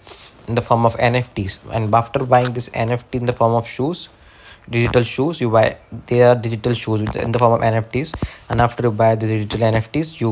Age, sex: 20-39, male